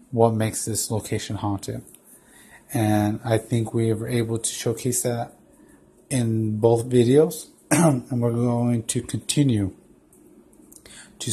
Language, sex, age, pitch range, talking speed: English, male, 30-49, 110-125 Hz, 120 wpm